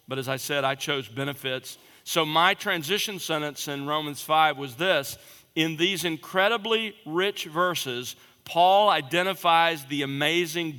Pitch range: 135-170 Hz